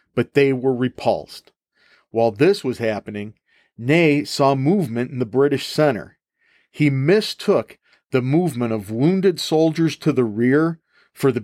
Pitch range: 120-160 Hz